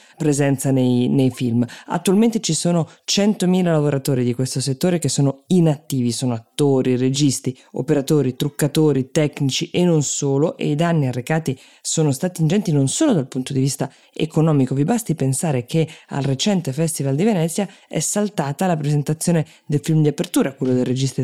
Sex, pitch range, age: female, 130-160 Hz, 20-39